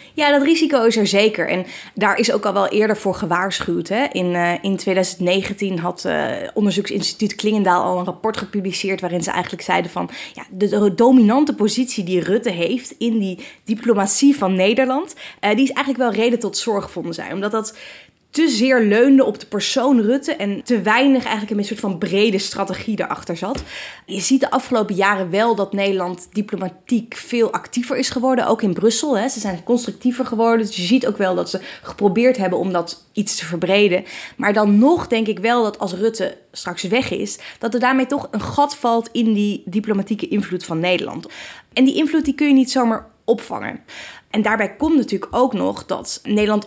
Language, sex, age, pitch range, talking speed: Dutch, female, 20-39, 190-245 Hz, 195 wpm